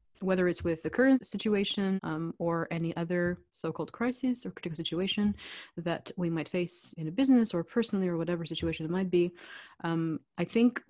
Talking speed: 180 wpm